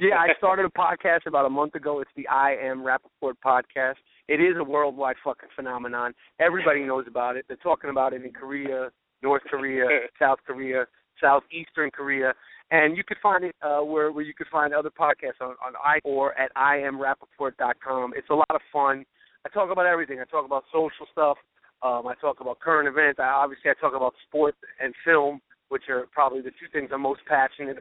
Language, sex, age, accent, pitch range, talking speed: English, male, 30-49, American, 130-160 Hz, 205 wpm